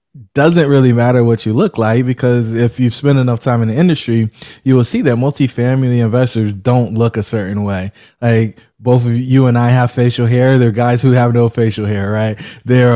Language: English